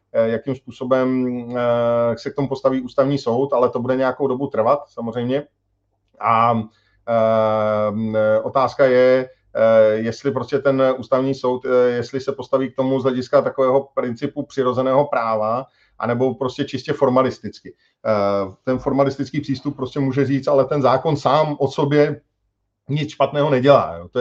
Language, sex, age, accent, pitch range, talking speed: Czech, male, 40-59, native, 125-145 Hz, 135 wpm